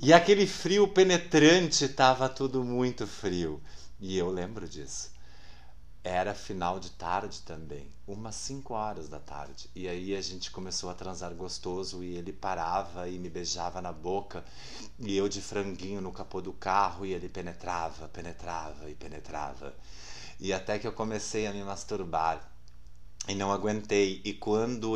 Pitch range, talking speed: 80-105 Hz, 155 wpm